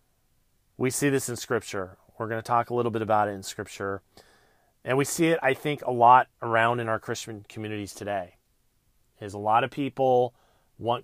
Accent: American